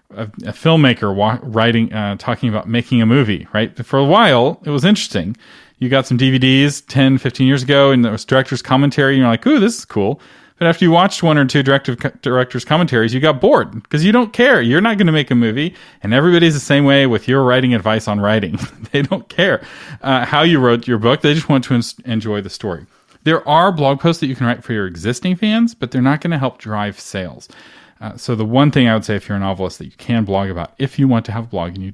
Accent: American